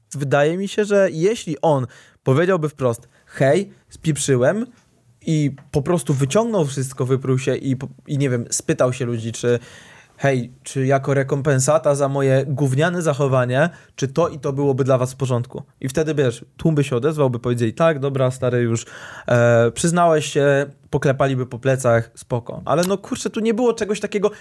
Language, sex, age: Polish, male, 20-39